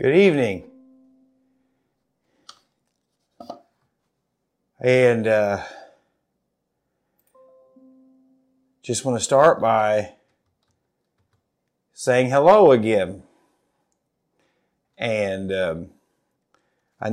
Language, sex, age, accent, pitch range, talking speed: English, male, 50-69, American, 110-135 Hz, 55 wpm